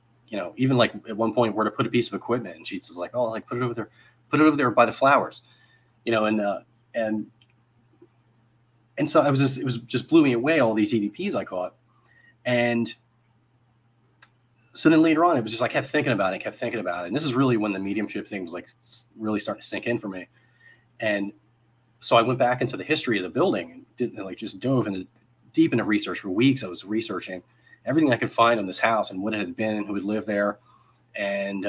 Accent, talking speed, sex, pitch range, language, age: American, 240 wpm, male, 105-120 Hz, English, 30-49